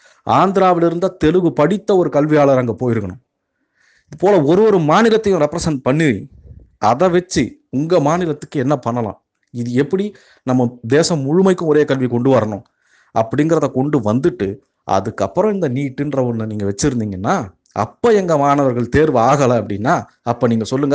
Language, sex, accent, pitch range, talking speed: Tamil, male, native, 120-165 Hz, 135 wpm